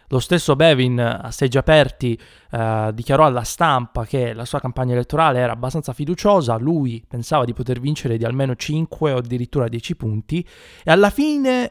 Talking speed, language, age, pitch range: 170 wpm, Italian, 20-39, 115-150 Hz